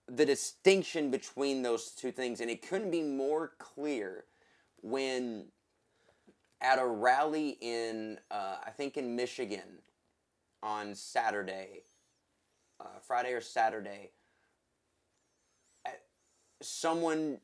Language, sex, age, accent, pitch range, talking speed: English, male, 20-39, American, 115-145 Hz, 100 wpm